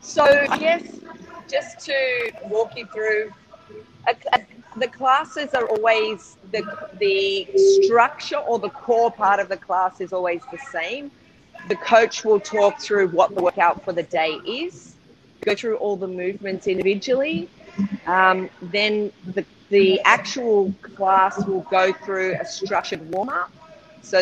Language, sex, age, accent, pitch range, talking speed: English, female, 40-59, Australian, 185-230 Hz, 145 wpm